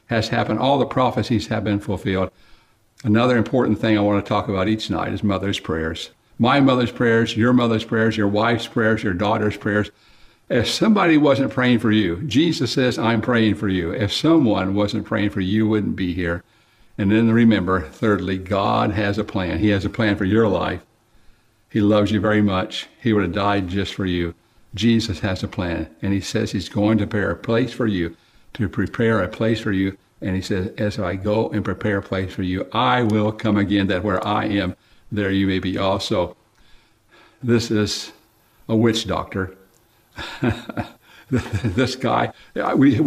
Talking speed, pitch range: 190 wpm, 100-115 Hz